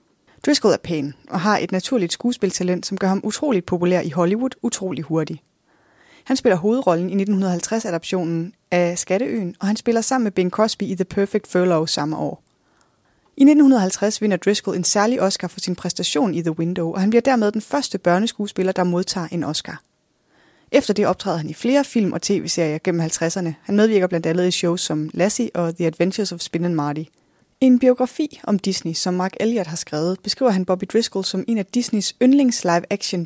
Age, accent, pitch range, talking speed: 20-39, native, 170-210 Hz, 195 wpm